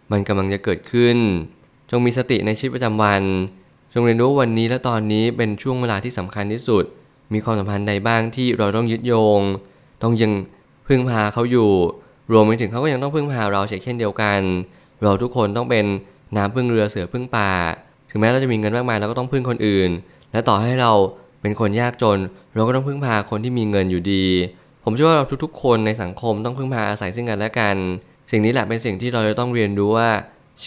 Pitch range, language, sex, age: 100-125 Hz, Thai, male, 20-39